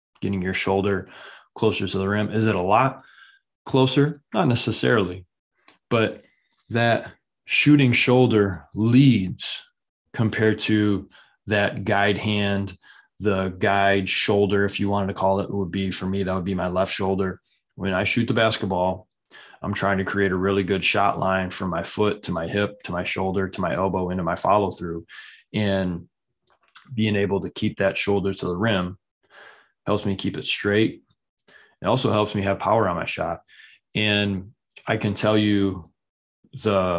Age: 20-39